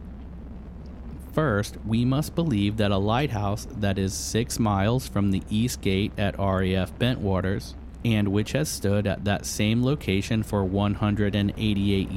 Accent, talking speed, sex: American, 140 wpm, male